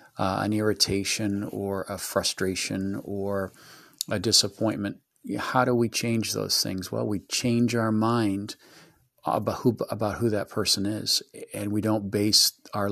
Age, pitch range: 40-59, 100-115 Hz